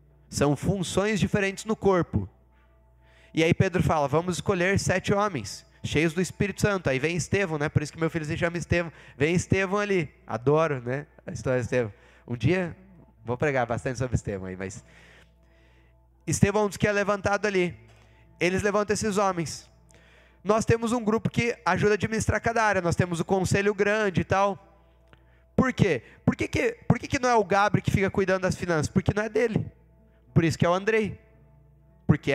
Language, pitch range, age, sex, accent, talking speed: Portuguese, 135-205 Hz, 20-39, male, Brazilian, 185 wpm